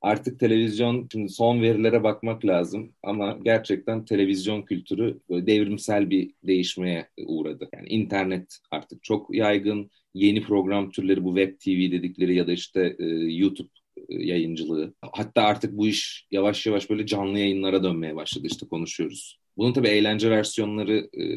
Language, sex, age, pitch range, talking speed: Turkish, male, 40-59, 90-110 Hz, 140 wpm